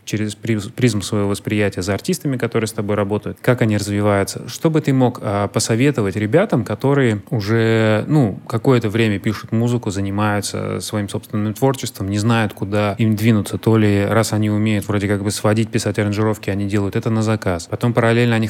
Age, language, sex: 20-39, Russian, male